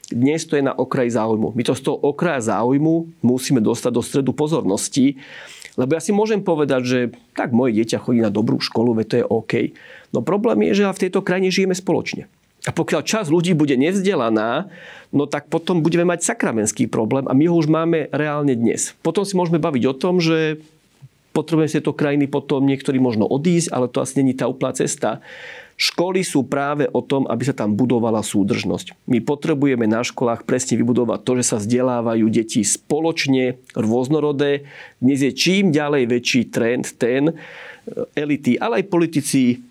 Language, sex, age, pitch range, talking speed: Slovak, male, 40-59, 125-165 Hz, 180 wpm